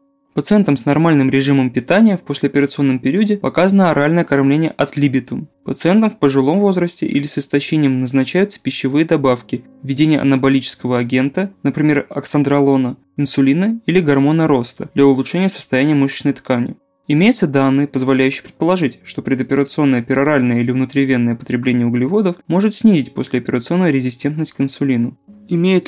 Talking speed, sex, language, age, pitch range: 130 wpm, male, Russian, 20-39, 130-165 Hz